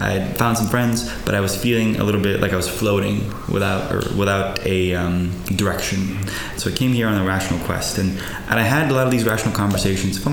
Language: English